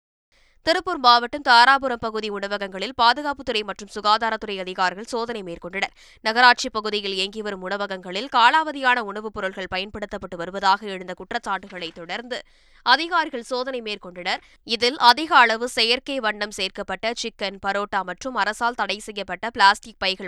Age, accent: 20-39, native